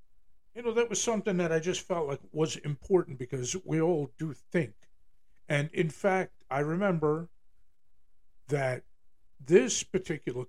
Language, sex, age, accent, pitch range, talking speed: English, male, 50-69, American, 120-165 Hz, 145 wpm